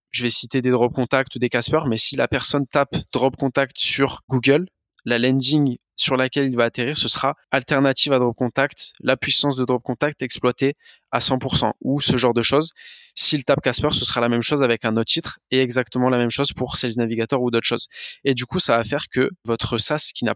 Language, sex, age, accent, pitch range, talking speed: French, male, 20-39, French, 120-145 Hz, 230 wpm